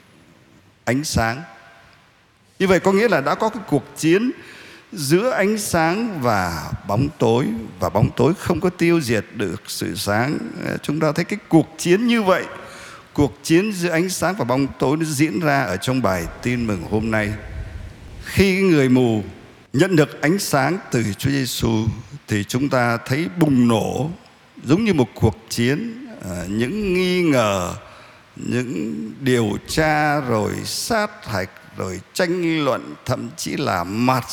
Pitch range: 110-160 Hz